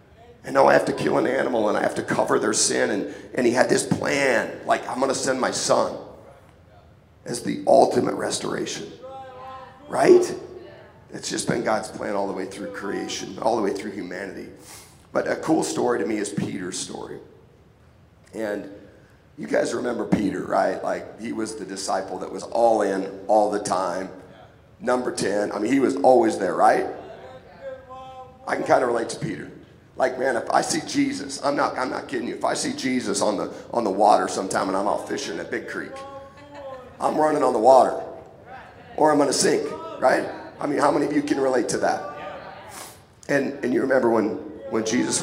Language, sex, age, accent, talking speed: English, male, 40-59, American, 195 wpm